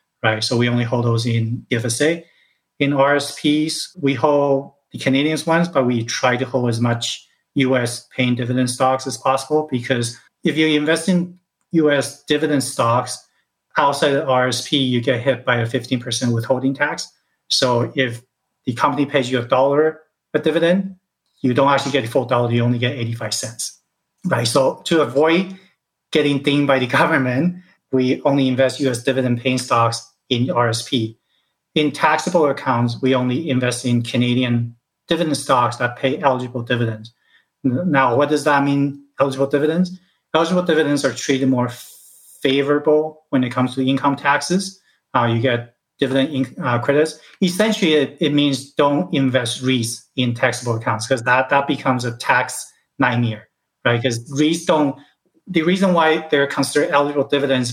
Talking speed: 165 wpm